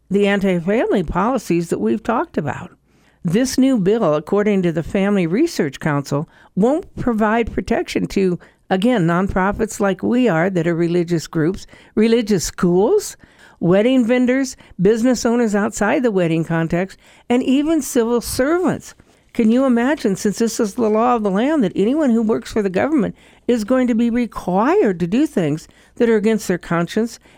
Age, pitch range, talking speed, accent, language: 60-79, 185-240 Hz, 160 wpm, American, English